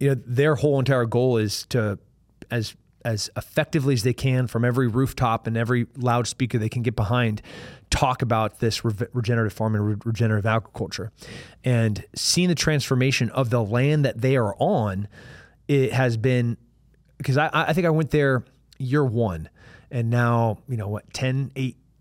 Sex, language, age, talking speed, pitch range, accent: male, English, 20-39, 175 wpm, 110-135 Hz, American